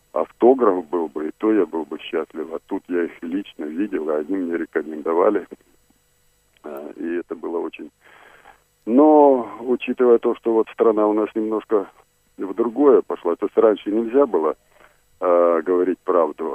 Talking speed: 150 wpm